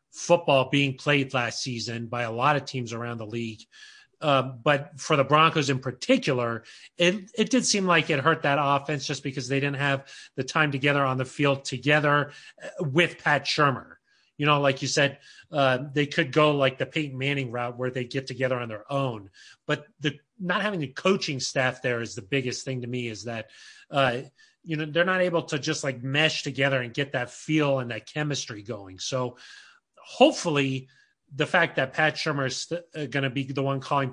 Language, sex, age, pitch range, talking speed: English, male, 30-49, 125-155 Hz, 200 wpm